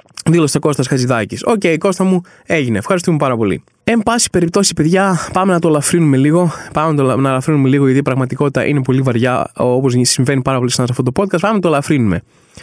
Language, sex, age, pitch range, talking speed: Greek, male, 20-39, 140-215 Hz, 200 wpm